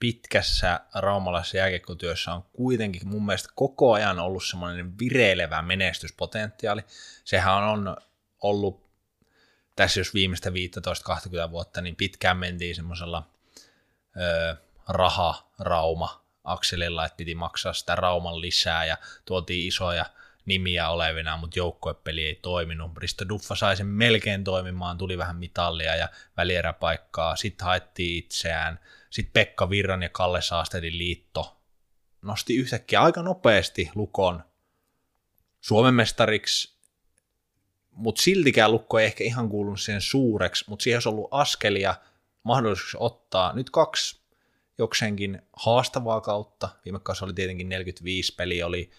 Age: 20-39